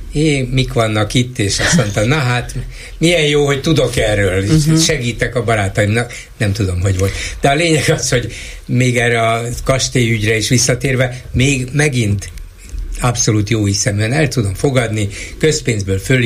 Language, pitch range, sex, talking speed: Hungarian, 105-135 Hz, male, 155 wpm